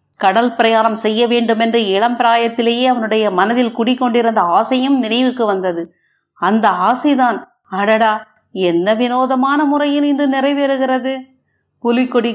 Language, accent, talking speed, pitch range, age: Tamil, native, 105 wpm, 210-260 Hz, 50-69